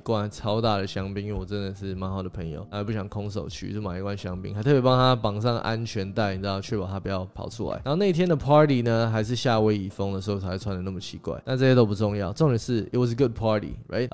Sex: male